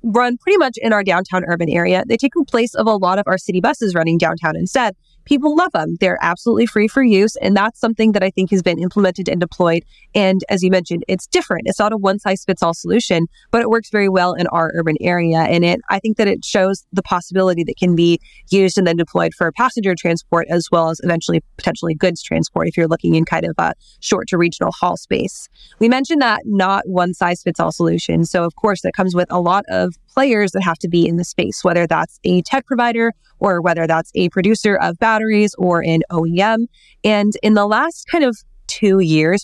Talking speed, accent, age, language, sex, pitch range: 220 wpm, American, 20-39, English, female, 170-210 Hz